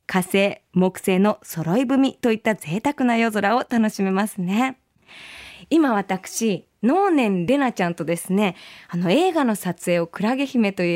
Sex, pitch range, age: female, 200-295 Hz, 20-39